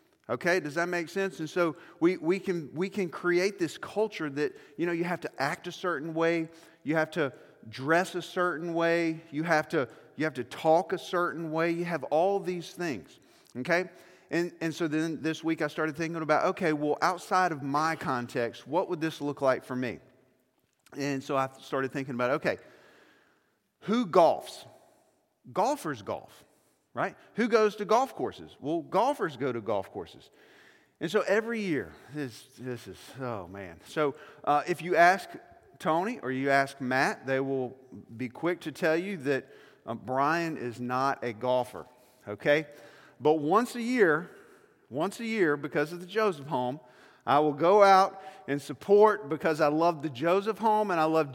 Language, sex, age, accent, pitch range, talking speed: English, male, 40-59, American, 140-185 Hz, 180 wpm